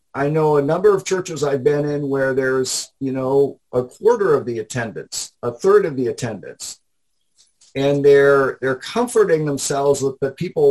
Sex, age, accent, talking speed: male, 50-69, American, 175 wpm